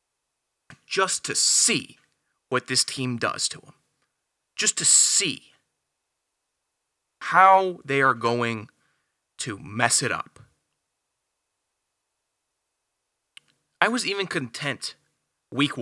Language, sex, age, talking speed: English, male, 20-39, 95 wpm